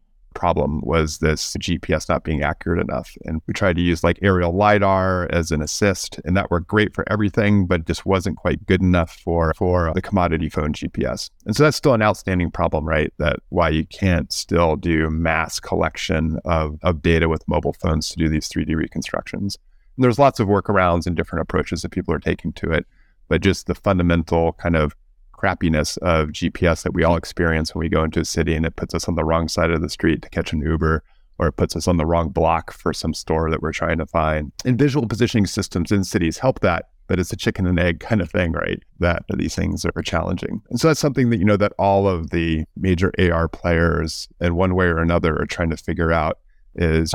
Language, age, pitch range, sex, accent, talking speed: English, 30-49, 80-95 Hz, male, American, 225 wpm